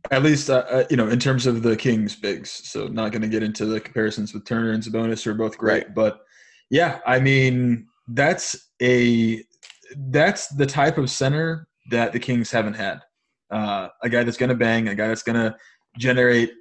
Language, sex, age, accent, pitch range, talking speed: English, male, 20-39, American, 115-130 Hz, 200 wpm